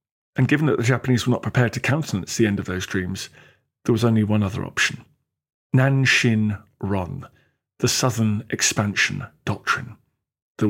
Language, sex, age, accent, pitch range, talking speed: English, male, 40-59, British, 105-130 Hz, 150 wpm